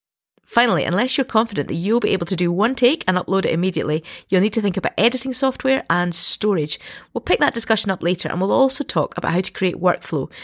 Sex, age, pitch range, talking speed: female, 30-49, 165-240 Hz, 230 wpm